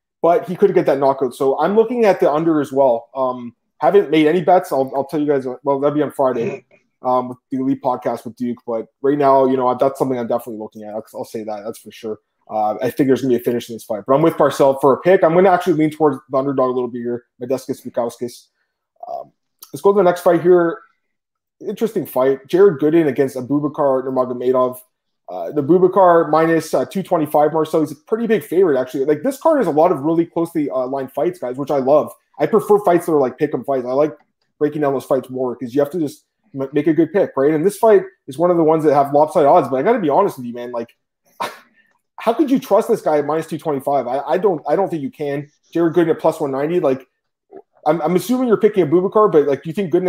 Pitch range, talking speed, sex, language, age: 130-175 Hz, 260 wpm, male, English, 20-39